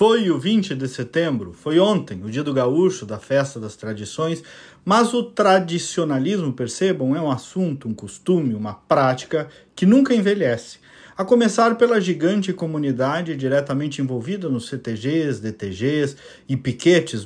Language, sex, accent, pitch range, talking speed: Portuguese, male, Brazilian, 130-205 Hz, 145 wpm